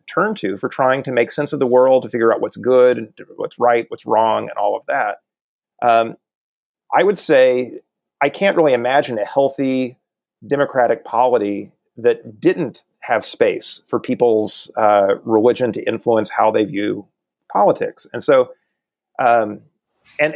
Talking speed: 155 wpm